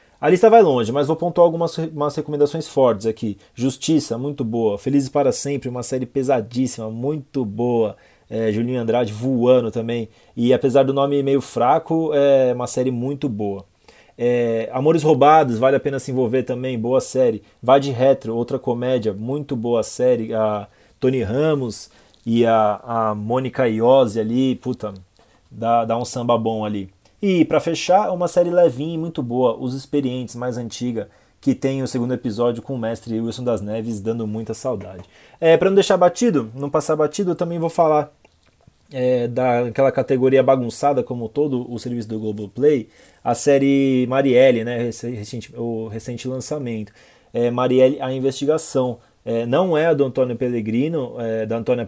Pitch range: 115-140 Hz